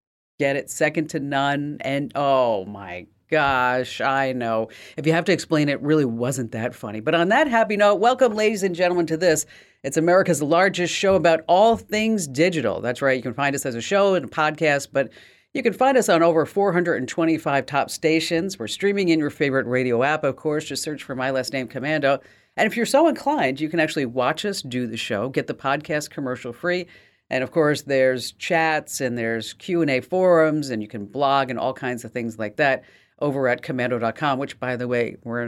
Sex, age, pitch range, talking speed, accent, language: female, 40-59, 125-165 Hz, 210 wpm, American, English